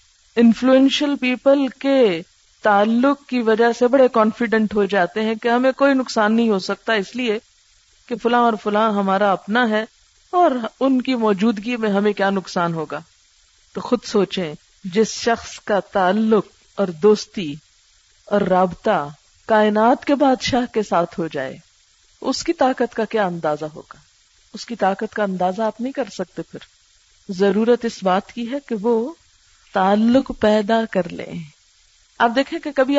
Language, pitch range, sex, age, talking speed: Urdu, 195-260 Hz, female, 50-69, 160 wpm